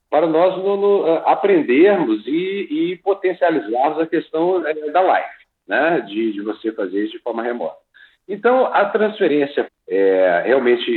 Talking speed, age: 120 wpm, 50-69